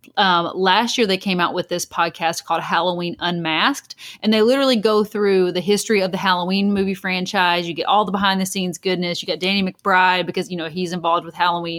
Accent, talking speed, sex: American, 220 wpm, female